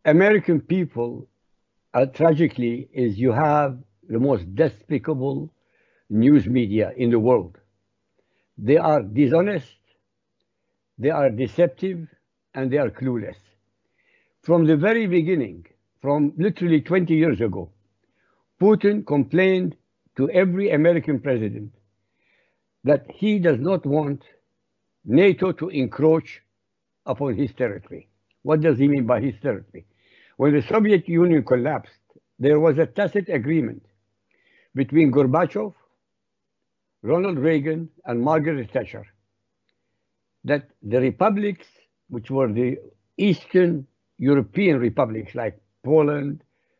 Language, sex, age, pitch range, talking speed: English, male, 60-79, 115-170 Hz, 110 wpm